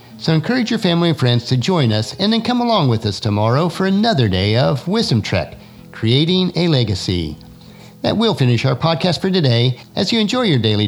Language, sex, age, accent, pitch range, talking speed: English, male, 50-69, American, 110-170 Hz, 205 wpm